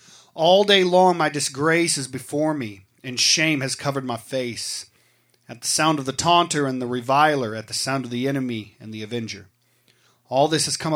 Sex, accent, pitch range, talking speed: male, American, 120-160 Hz, 195 wpm